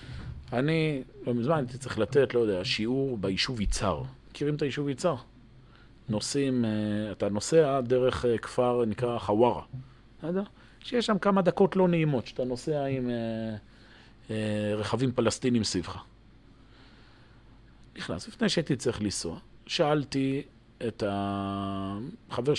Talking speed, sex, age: 120 wpm, male, 40-59